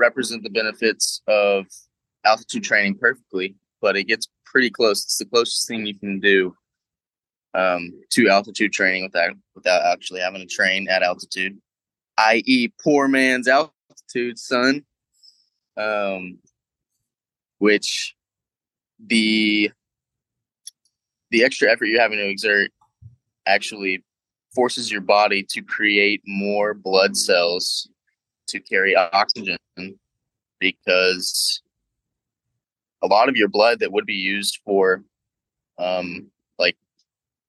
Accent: American